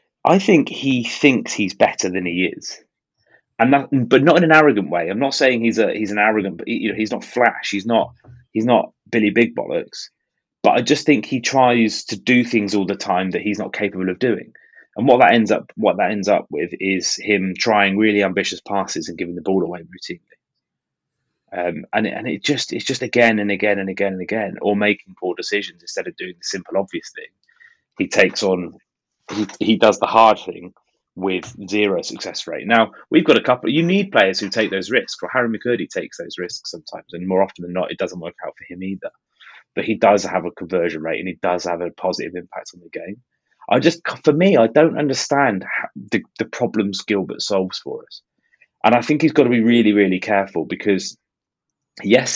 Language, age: English, 30-49